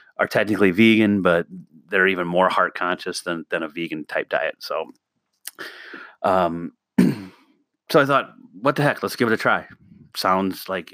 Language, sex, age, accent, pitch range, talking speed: English, male, 30-49, American, 90-115 Hz, 165 wpm